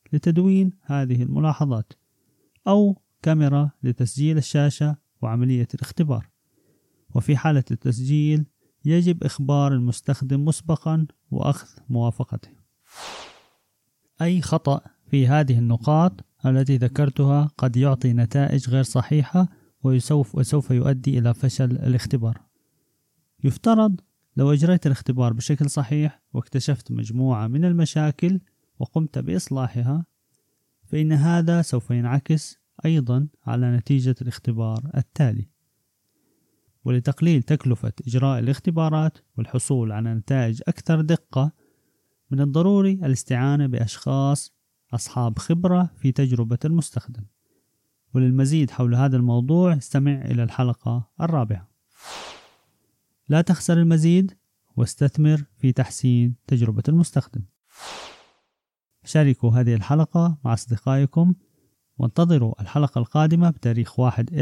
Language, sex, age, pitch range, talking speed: Arabic, male, 30-49, 120-150 Hz, 95 wpm